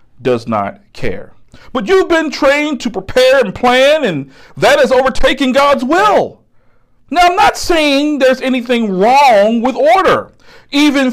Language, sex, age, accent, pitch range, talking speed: English, male, 50-69, American, 165-275 Hz, 145 wpm